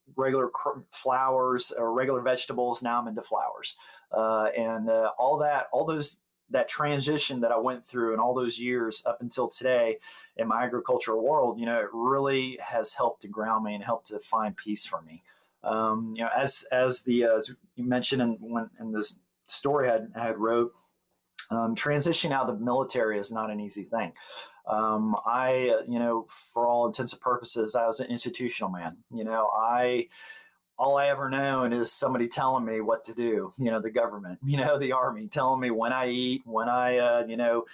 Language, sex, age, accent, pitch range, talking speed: English, male, 30-49, American, 115-135 Hz, 195 wpm